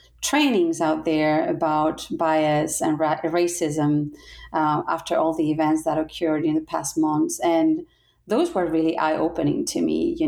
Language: English